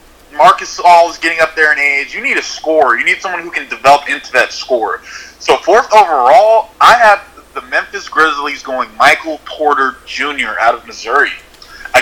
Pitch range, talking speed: 135-170 Hz, 185 wpm